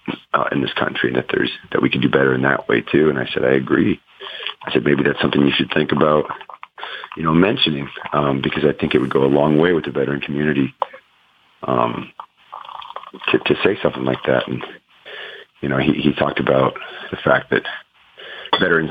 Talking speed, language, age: 205 wpm, English, 40-59